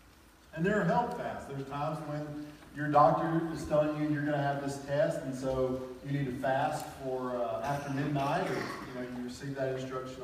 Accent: American